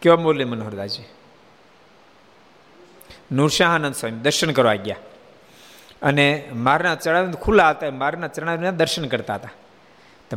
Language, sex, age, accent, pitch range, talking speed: Gujarati, male, 50-69, native, 135-180 Hz, 110 wpm